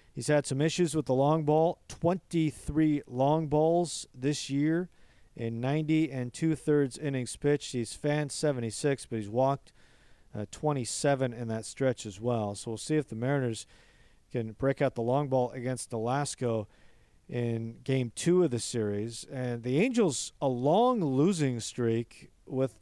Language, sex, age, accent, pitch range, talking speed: English, male, 40-59, American, 120-155 Hz, 160 wpm